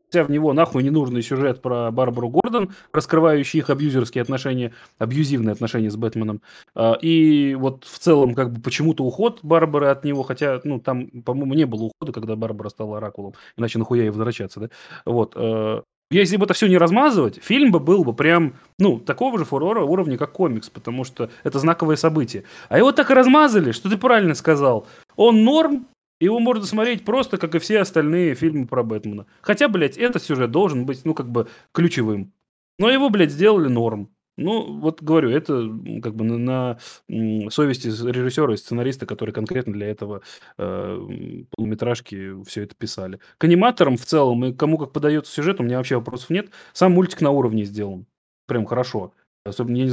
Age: 20-39